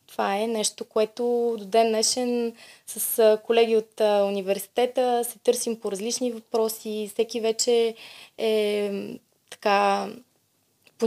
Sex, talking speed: female, 115 wpm